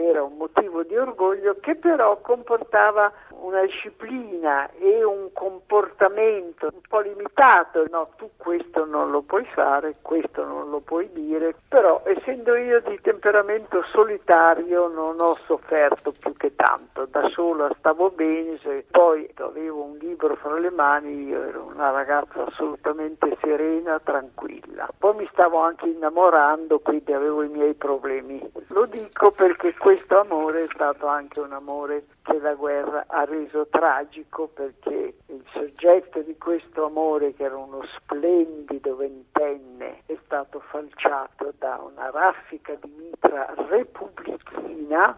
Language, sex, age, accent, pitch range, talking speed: Italian, male, 60-79, native, 150-210 Hz, 140 wpm